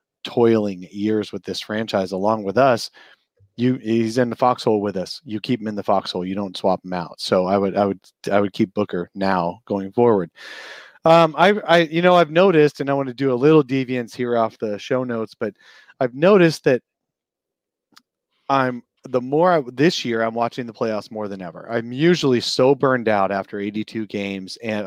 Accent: American